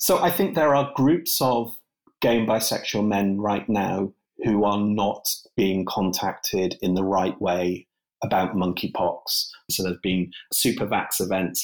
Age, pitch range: 30-49, 90-100 Hz